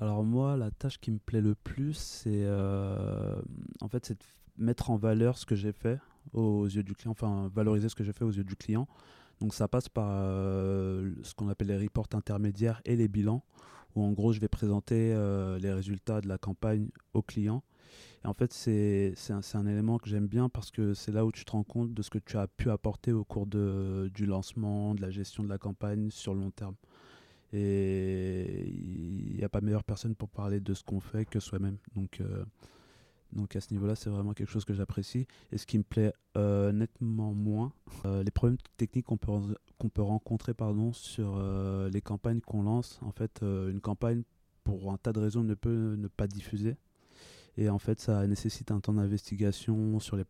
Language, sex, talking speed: French, male, 215 wpm